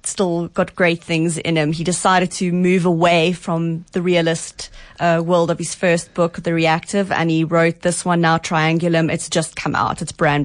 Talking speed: 200 wpm